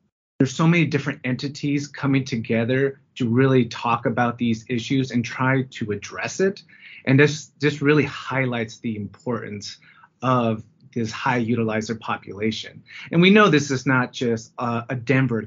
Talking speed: 150 wpm